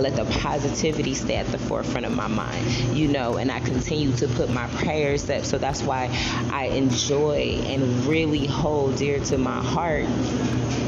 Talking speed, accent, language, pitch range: 180 wpm, American, English, 120-155 Hz